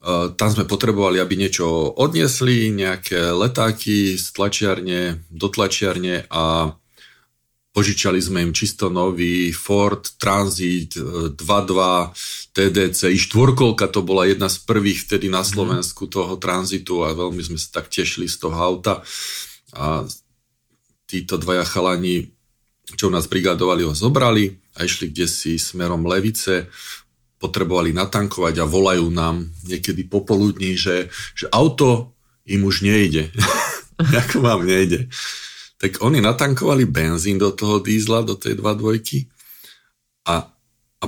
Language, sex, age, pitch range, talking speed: Slovak, male, 40-59, 90-110 Hz, 125 wpm